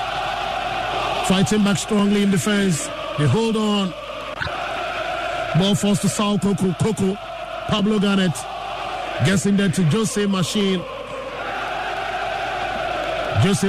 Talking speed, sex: 100 wpm, male